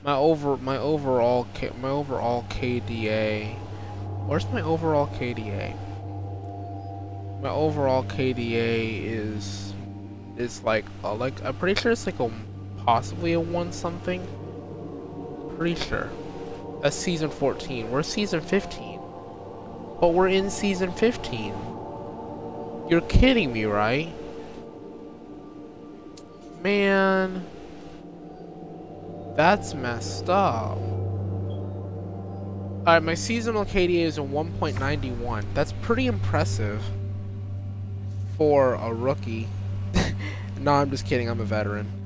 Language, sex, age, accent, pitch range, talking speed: English, male, 20-39, American, 100-135 Hz, 105 wpm